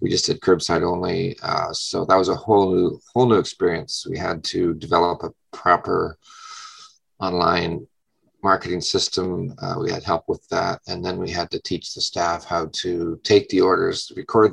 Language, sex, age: English, male, 40-59